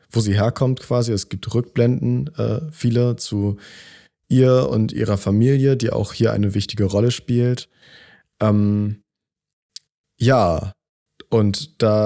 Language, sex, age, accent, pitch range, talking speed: German, male, 20-39, German, 105-125 Hz, 125 wpm